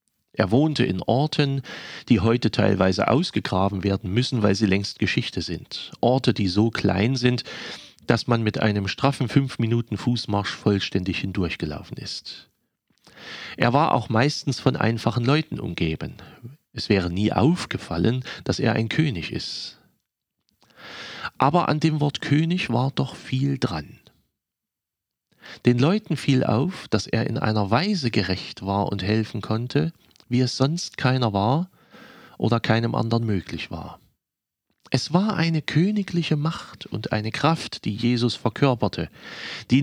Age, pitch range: 40-59, 105-140 Hz